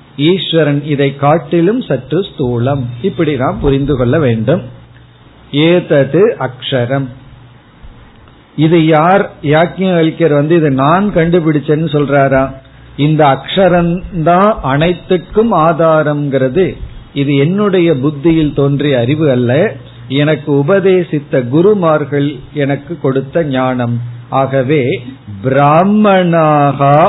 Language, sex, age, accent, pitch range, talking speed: Tamil, male, 50-69, native, 135-165 Hz, 85 wpm